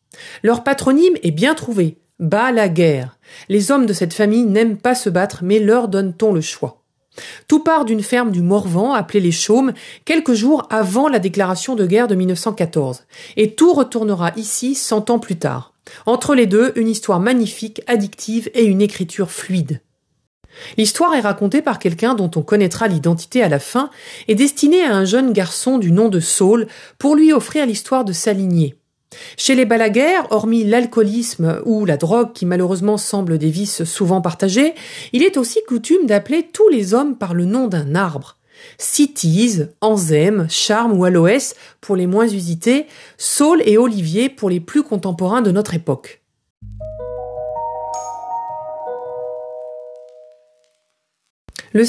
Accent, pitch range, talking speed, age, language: French, 175-245 Hz, 165 wpm, 40-59, French